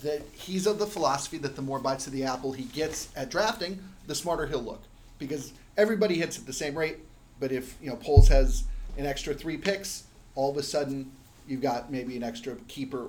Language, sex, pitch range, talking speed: English, male, 130-165 Hz, 215 wpm